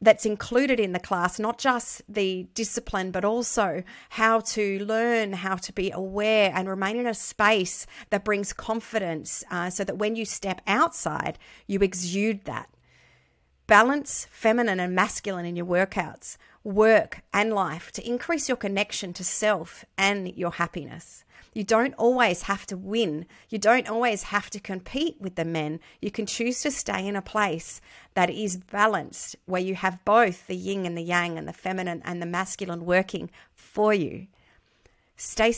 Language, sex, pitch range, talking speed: English, female, 185-225 Hz, 170 wpm